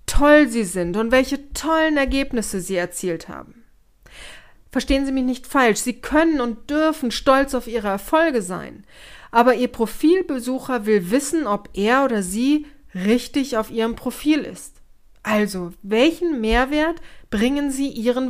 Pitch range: 225-285 Hz